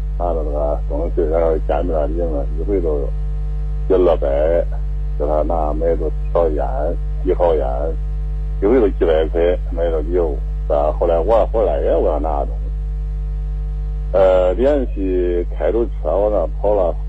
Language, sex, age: Chinese, male, 50-69